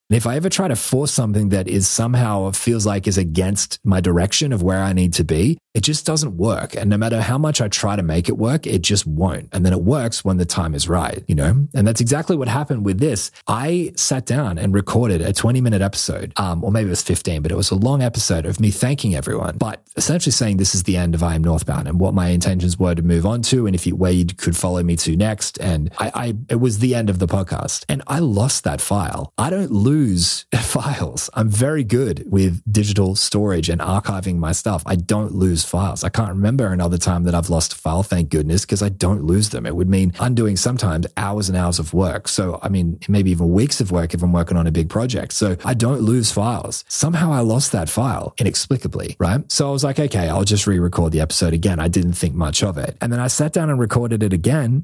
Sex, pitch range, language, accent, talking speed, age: male, 90-120 Hz, English, Australian, 245 wpm, 30-49